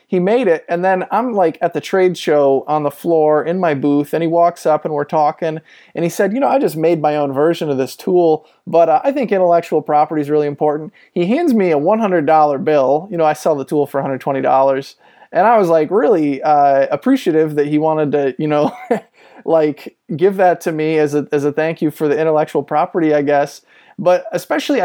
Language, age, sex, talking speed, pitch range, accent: English, 20-39, male, 220 wpm, 145-175 Hz, American